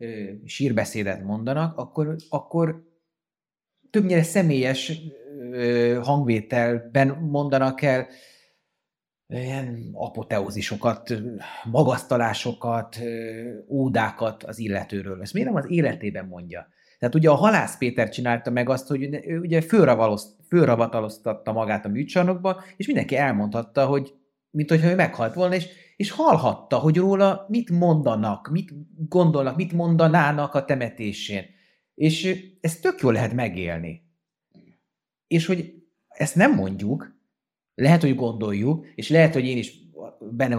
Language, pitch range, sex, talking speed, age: Hungarian, 115-165 Hz, male, 115 wpm, 30-49